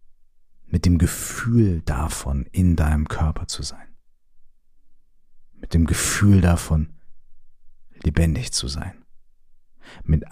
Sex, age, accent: male, 50-69, German